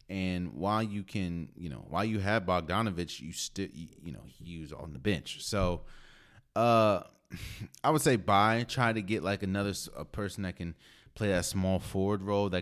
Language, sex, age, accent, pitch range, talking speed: English, male, 30-49, American, 80-105 Hz, 190 wpm